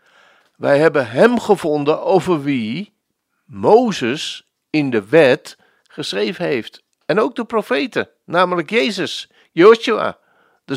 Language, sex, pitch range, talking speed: Dutch, male, 145-200 Hz, 110 wpm